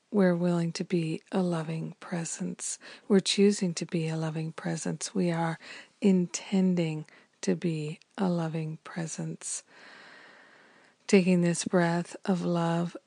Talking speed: 125 wpm